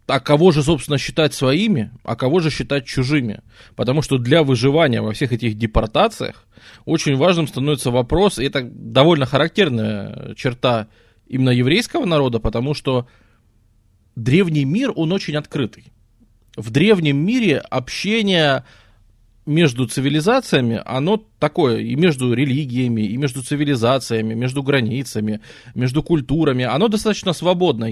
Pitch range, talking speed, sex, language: 115-150 Hz, 125 wpm, male, Russian